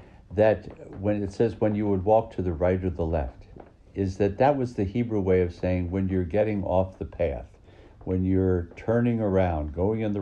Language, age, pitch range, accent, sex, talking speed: English, 60-79, 90-105 Hz, American, male, 210 wpm